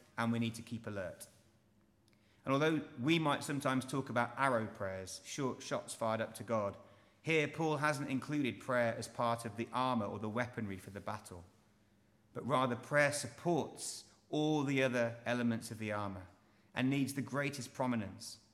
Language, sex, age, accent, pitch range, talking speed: English, male, 30-49, British, 105-130 Hz, 170 wpm